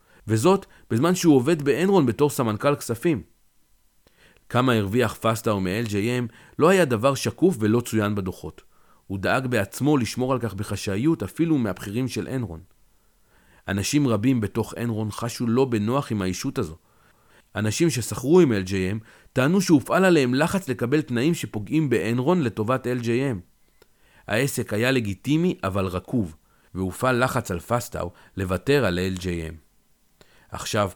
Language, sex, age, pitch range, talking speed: Hebrew, male, 40-59, 100-135 Hz, 135 wpm